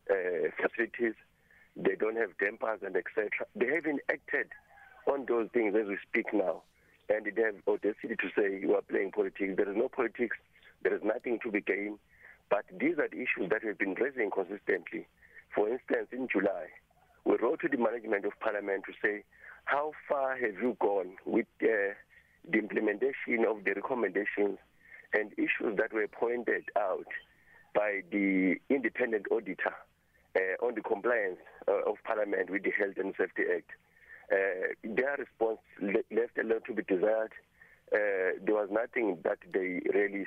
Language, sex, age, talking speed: English, male, 50-69, 170 wpm